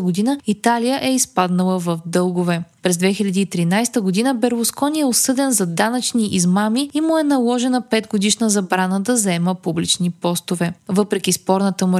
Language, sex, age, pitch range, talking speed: Bulgarian, female, 20-39, 185-245 Hz, 140 wpm